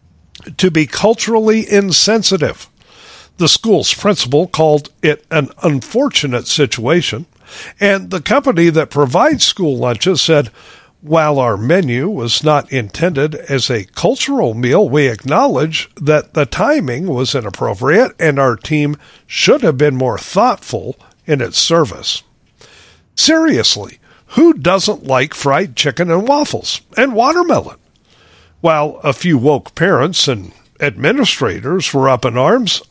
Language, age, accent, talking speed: English, 50-69, American, 125 wpm